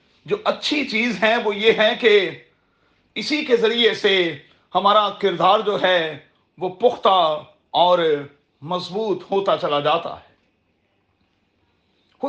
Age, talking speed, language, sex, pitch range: 40-59, 120 wpm, Urdu, male, 160-225 Hz